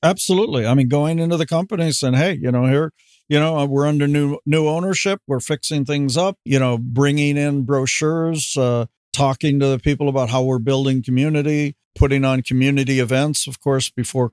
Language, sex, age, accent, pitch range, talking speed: English, male, 50-69, American, 130-145 Hz, 190 wpm